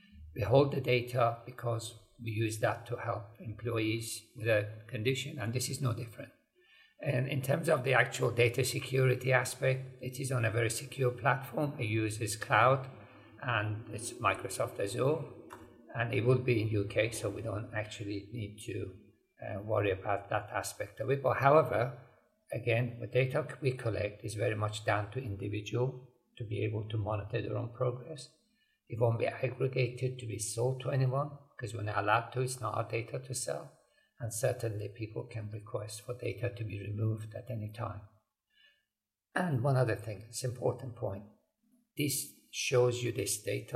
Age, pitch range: 50-69, 110-130 Hz